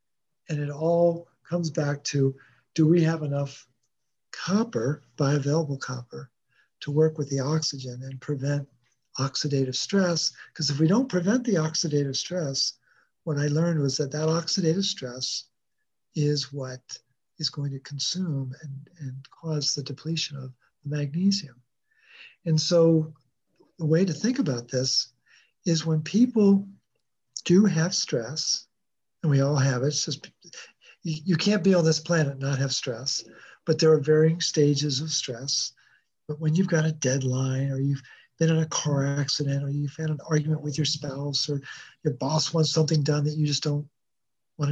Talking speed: 160 wpm